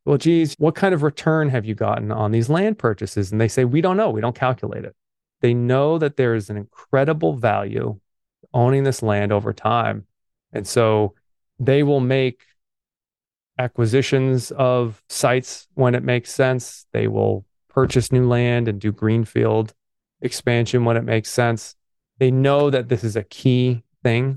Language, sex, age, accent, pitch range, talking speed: English, male, 30-49, American, 105-130 Hz, 170 wpm